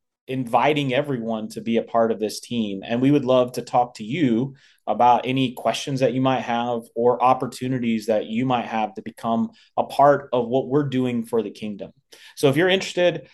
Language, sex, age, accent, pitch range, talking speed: English, male, 30-49, American, 115-140 Hz, 200 wpm